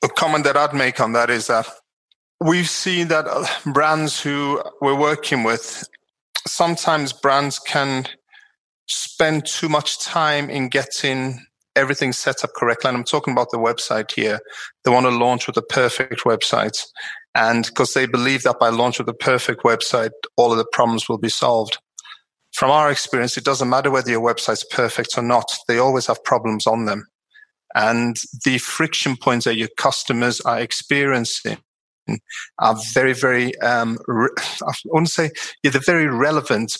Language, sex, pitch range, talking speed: English, male, 120-145 Hz, 170 wpm